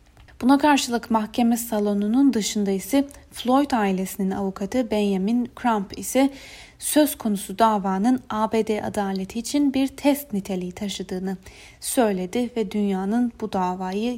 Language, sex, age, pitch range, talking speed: Turkish, female, 30-49, 195-240 Hz, 115 wpm